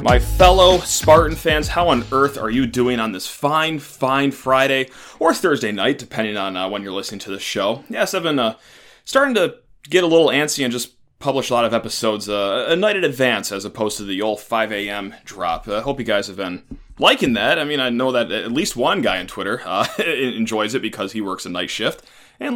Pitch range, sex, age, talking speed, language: 110-140 Hz, male, 30-49, 225 wpm, English